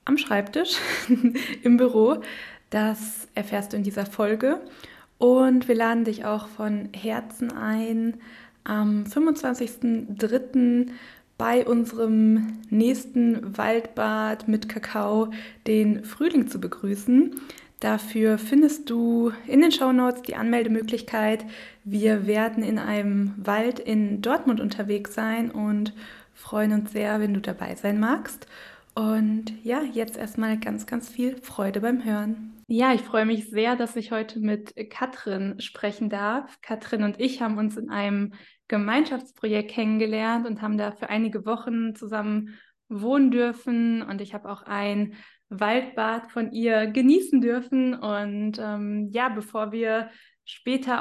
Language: German